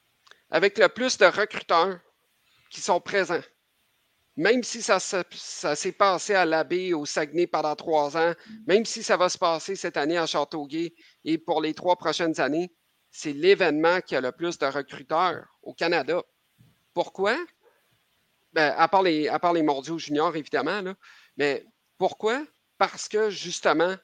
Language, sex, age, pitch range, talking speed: French, male, 50-69, 155-205 Hz, 150 wpm